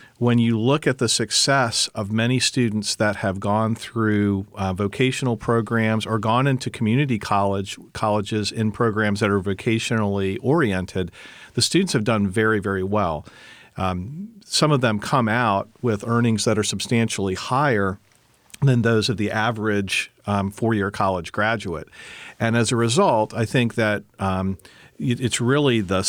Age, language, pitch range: 40-59, English, 100-120 Hz